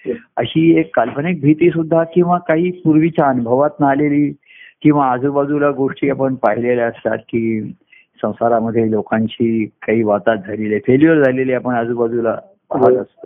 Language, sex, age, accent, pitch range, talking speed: Marathi, male, 50-69, native, 125-165 Hz, 120 wpm